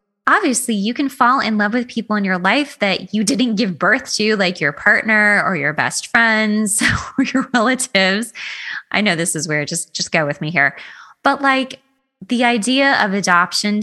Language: English